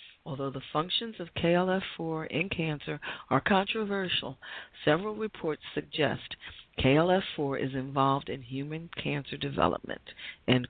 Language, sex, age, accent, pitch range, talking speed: English, female, 40-59, American, 140-180 Hz, 110 wpm